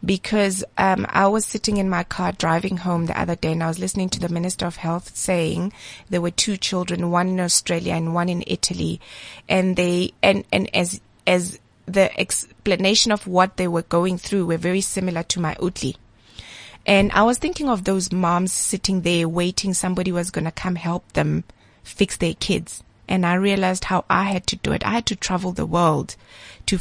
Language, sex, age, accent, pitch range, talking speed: English, female, 20-39, South African, 170-205 Hz, 200 wpm